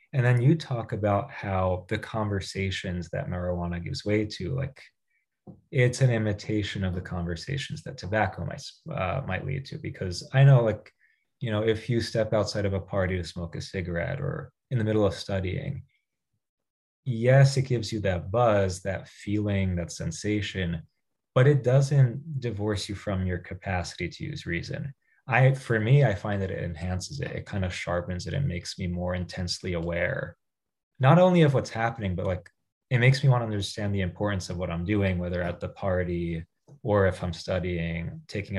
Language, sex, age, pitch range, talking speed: English, male, 20-39, 90-130 Hz, 185 wpm